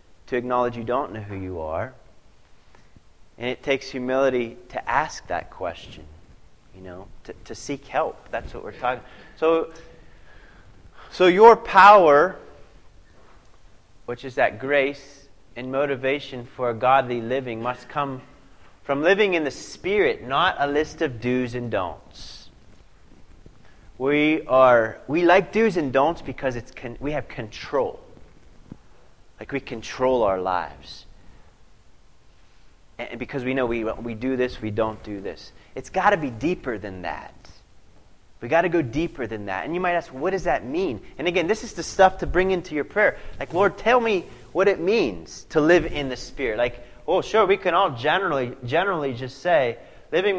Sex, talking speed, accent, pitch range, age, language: male, 170 wpm, American, 115-165 Hz, 30-49, English